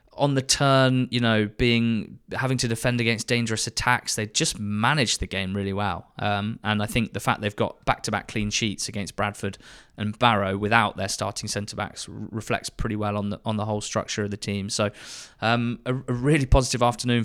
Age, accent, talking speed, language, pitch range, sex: 20-39, British, 200 wpm, English, 105-120 Hz, male